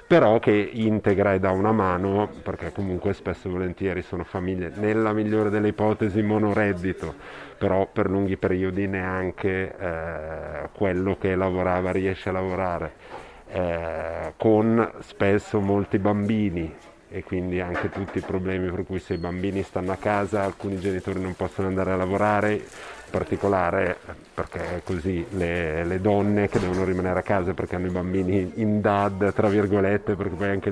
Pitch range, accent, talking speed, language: 90-100 Hz, native, 155 wpm, Italian